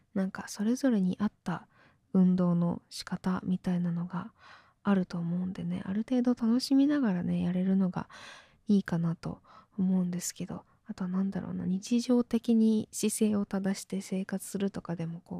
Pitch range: 180-220 Hz